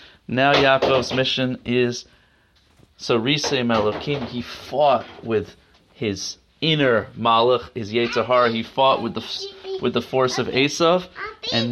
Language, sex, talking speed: English, male, 130 wpm